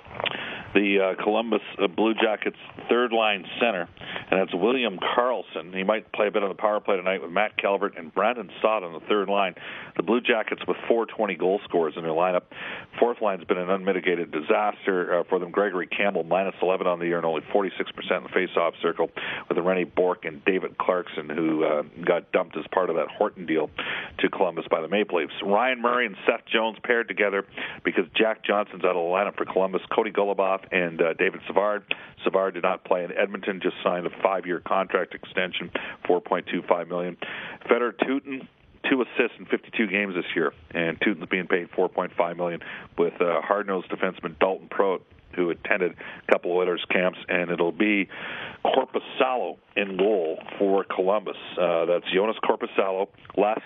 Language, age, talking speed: English, 50-69, 190 wpm